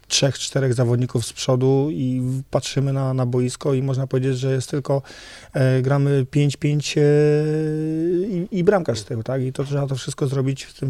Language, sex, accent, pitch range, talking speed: Polish, male, native, 130-145 Hz, 185 wpm